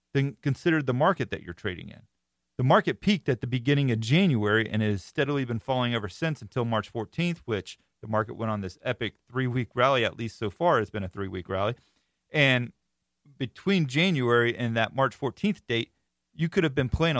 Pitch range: 105-135 Hz